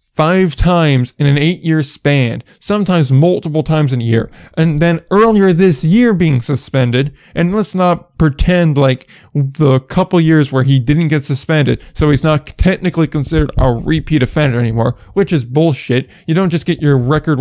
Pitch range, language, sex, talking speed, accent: 135-165 Hz, English, male, 170 wpm, American